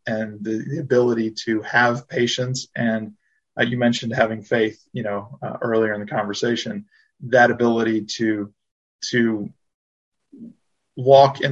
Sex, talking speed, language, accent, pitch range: male, 135 wpm, English, American, 110-125 Hz